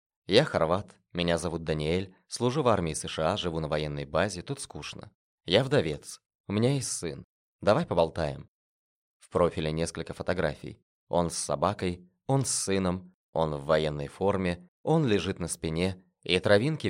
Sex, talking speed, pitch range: male, 155 wpm, 85-100 Hz